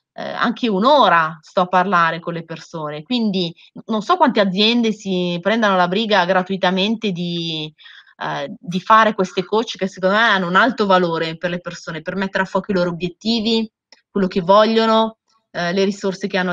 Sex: female